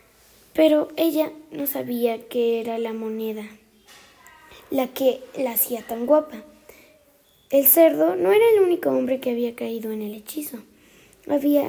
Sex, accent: female, Mexican